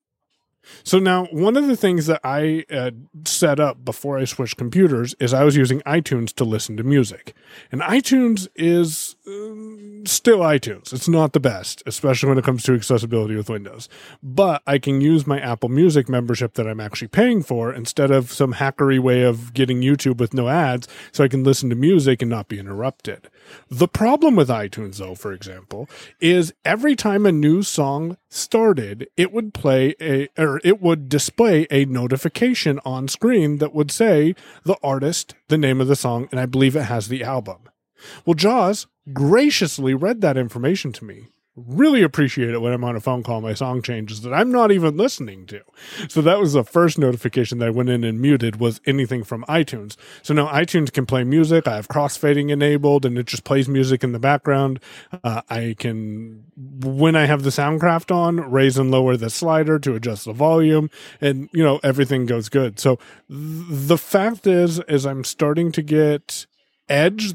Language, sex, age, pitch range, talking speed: English, male, 30-49, 125-165 Hz, 190 wpm